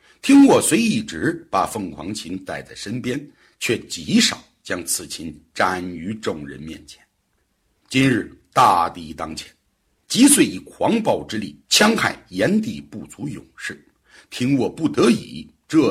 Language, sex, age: Chinese, male, 60-79